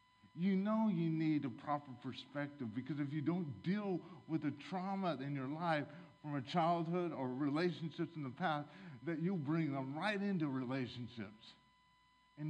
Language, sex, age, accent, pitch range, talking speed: English, male, 50-69, American, 135-175 Hz, 165 wpm